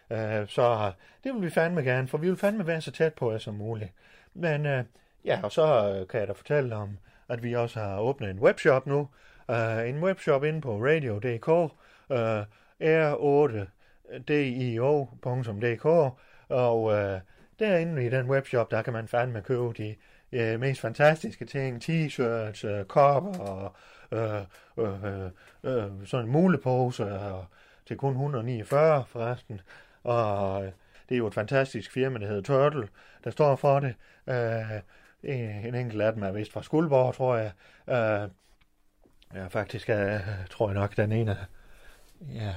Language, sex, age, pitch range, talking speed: Danish, male, 30-49, 105-135 Hz, 150 wpm